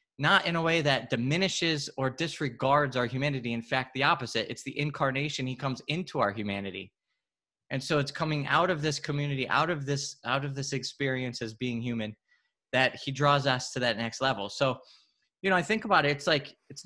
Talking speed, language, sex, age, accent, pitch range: 205 wpm, English, male, 20-39, American, 125-150 Hz